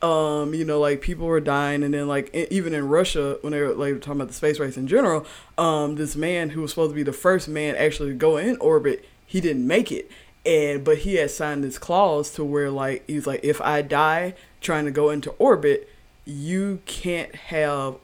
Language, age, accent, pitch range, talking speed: English, 20-39, American, 145-165 Hz, 225 wpm